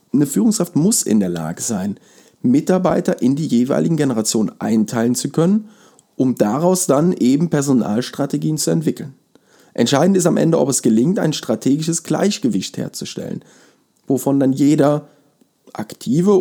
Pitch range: 115-155 Hz